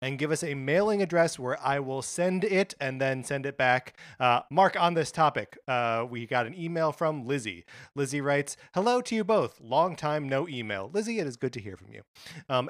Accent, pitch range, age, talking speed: American, 120-160 Hz, 30-49, 220 wpm